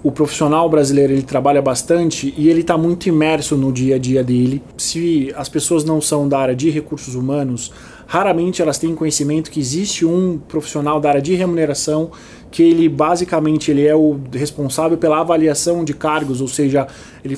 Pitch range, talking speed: 145-170 Hz, 175 wpm